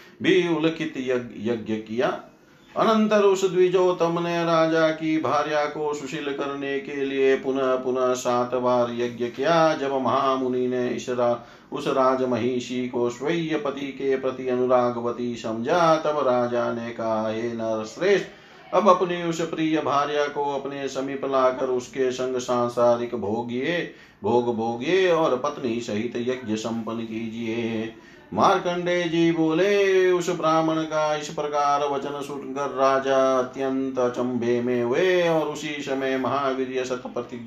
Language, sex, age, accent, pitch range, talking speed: Hindi, male, 40-59, native, 120-155 Hz, 125 wpm